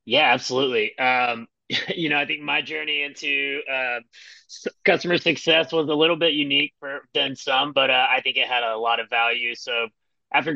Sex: male